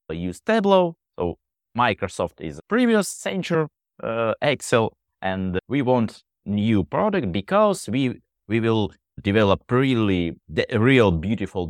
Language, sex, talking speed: English, male, 120 wpm